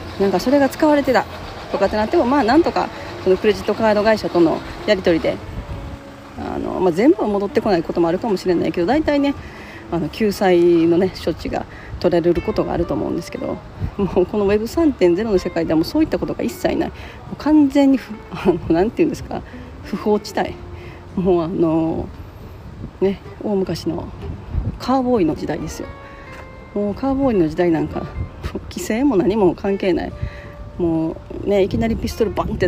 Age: 40-59